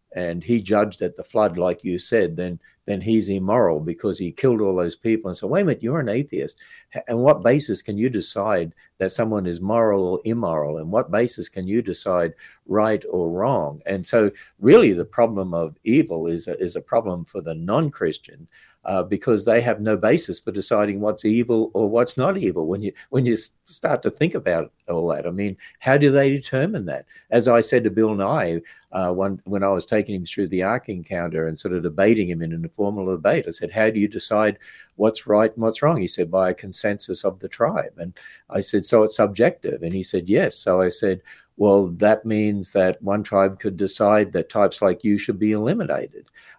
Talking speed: 215 wpm